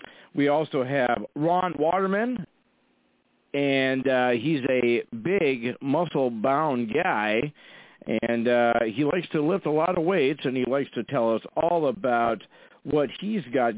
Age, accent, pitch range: 50-69, American, 120-180 Hz